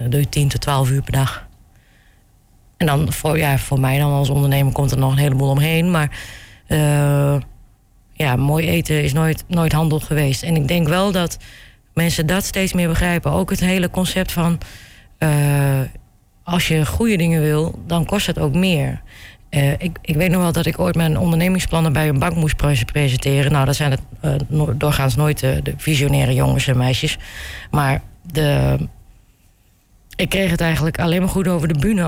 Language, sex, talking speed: Dutch, female, 185 wpm